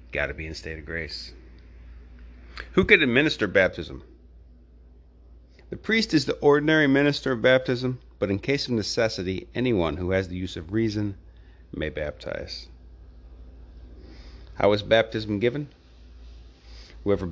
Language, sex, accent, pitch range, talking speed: English, male, American, 70-105 Hz, 130 wpm